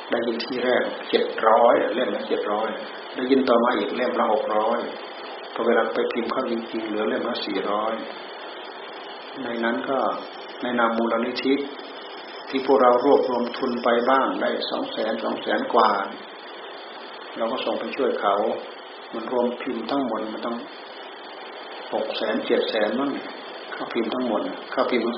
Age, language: 60-79, Thai